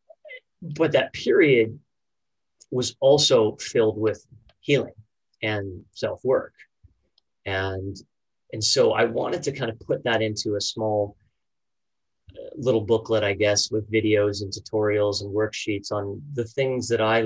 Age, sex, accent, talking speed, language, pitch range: 30-49, male, American, 135 wpm, English, 100-110 Hz